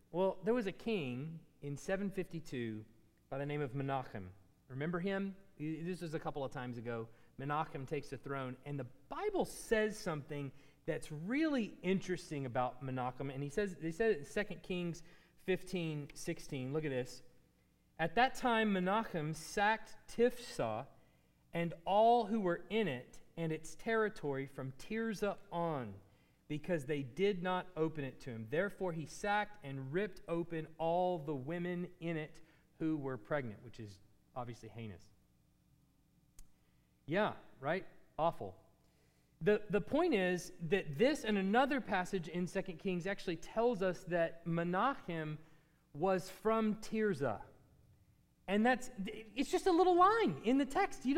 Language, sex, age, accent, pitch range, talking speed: English, male, 30-49, American, 140-210 Hz, 150 wpm